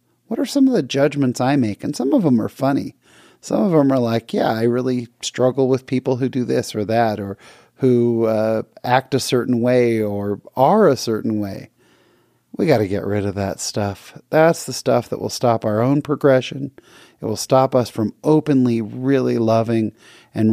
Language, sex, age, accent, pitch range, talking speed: English, male, 40-59, American, 115-140 Hz, 200 wpm